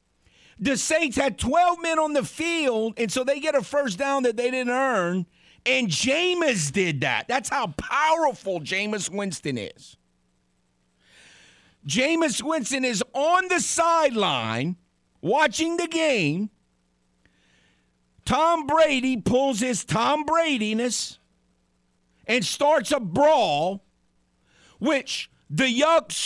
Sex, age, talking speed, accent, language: male, 50-69, 115 wpm, American, English